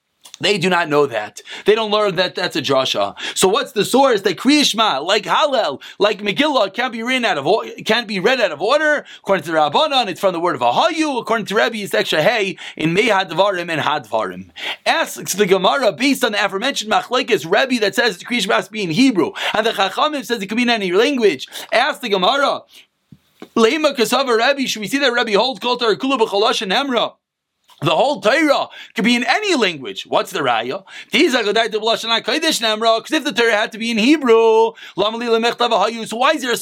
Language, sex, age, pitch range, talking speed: English, male, 30-49, 205-270 Hz, 200 wpm